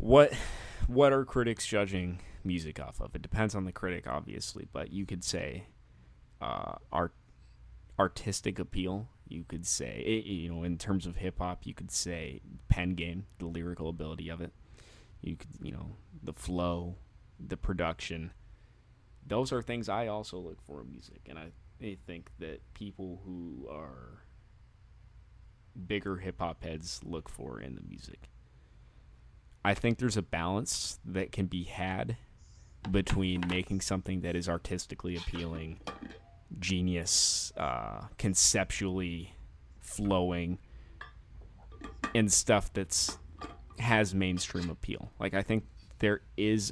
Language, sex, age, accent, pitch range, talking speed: English, male, 20-39, American, 85-105 Hz, 135 wpm